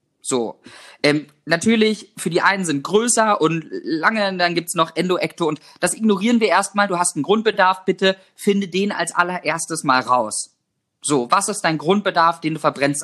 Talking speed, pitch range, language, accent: 185 wpm, 160-220 Hz, German, German